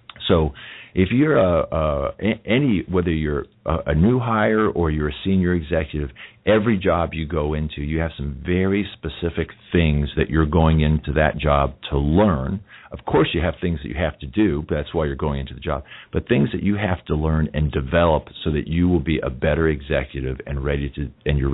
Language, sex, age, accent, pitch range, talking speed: English, male, 50-69, American, 75-95 Hz, 210 wpm